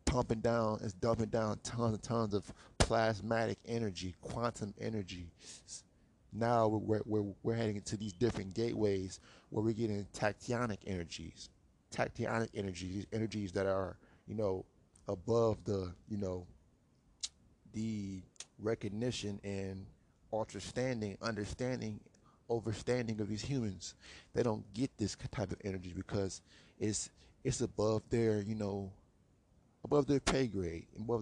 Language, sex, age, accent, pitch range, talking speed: English, male, 20-39, American, 100-115 Hz, 130 wpm